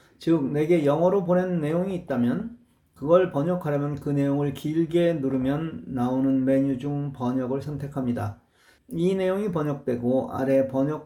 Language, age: Korean, 40-59